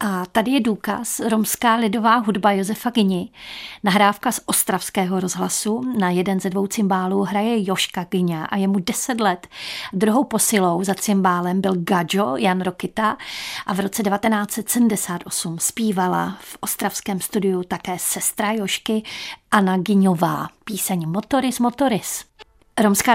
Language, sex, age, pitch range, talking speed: Czech, female, 30-49, 190-230 Hz, 130 wpm